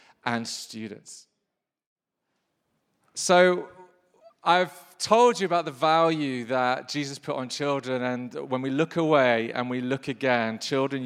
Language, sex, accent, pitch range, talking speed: English, male, British, 130-165 Hz, 130 wpm